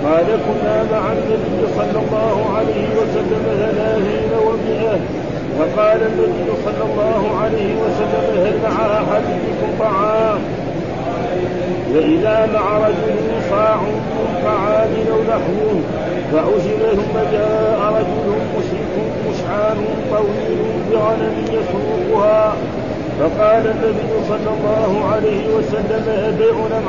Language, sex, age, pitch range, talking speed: Arabic, male, 50-69, 210-220 Hz, 90 wpm